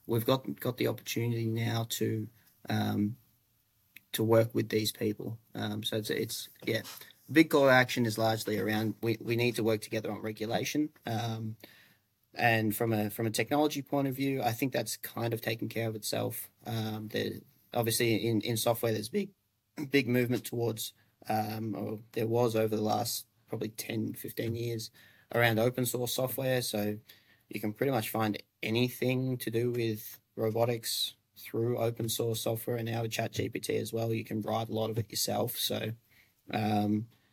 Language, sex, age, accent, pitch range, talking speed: English, male, 20-39, Australian, 105-120 Hz, 175 wpm